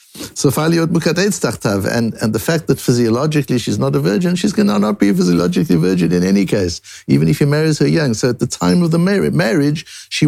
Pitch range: 110-165 Hz